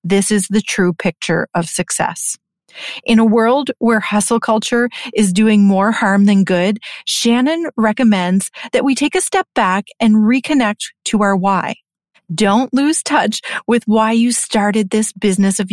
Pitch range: 195-245 Hz